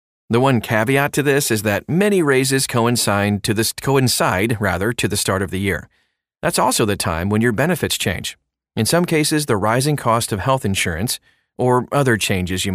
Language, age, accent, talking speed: English, 40-59, American, 180 wpm